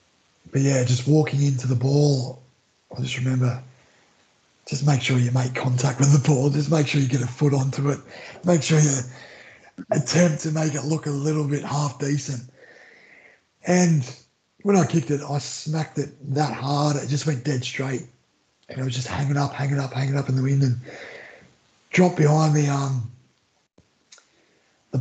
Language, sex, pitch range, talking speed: English, male, 130-150 Hz, 180 wpm